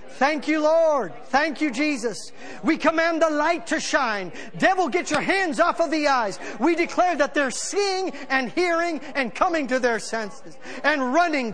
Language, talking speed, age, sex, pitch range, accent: English, 175 wpm, 50-69, male, 225-300 Hz, American